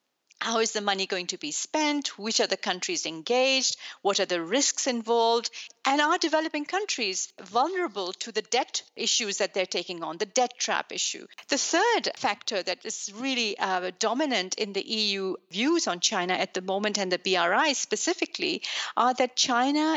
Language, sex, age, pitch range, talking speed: English, female, 40-59, 195-265 Hz, 175 wpm